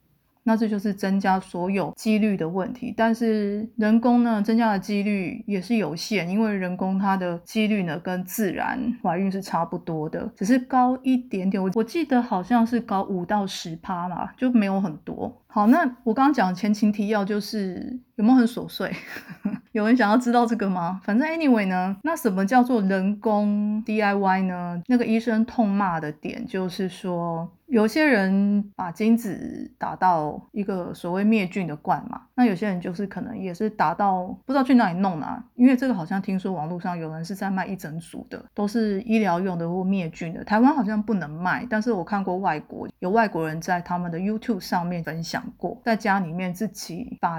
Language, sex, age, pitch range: Chinese, female, 30-49, 185-230 Hz